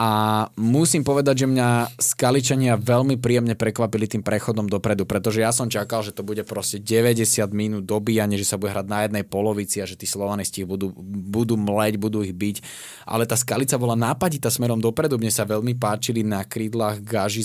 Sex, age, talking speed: male, 20-39, 185 wpm